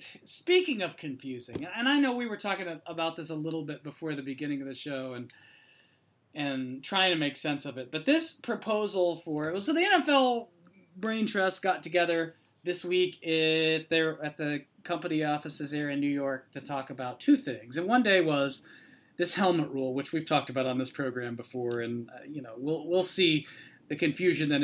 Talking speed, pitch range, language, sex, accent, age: 200 wpm, 140-215 Hz, English, male, American, 30-49